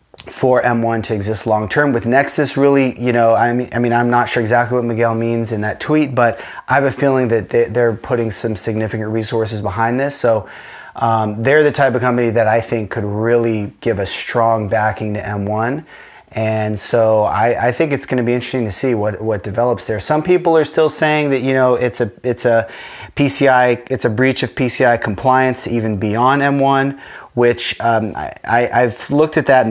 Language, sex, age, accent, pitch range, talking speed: English, male, 30-49, American, 110-125 Hz, 205 wpm